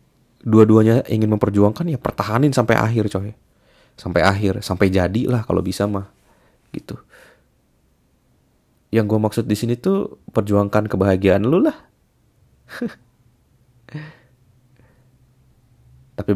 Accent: native